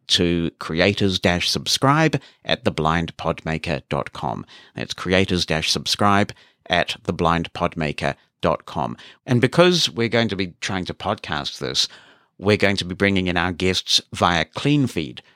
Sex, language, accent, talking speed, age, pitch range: male, English, British, 115 wpm, 50-69, 90-115 Hz